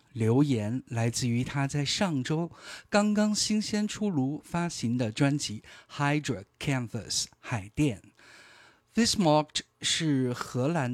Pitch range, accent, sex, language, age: 115-150 Hz, native, male, Chinese, 50-69